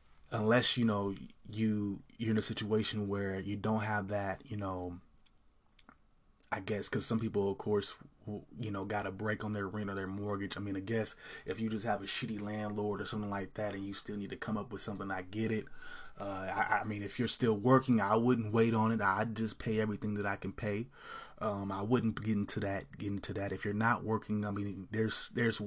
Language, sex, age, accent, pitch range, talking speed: English, male, 20-39, American, 105-120 Hz, 230 wpm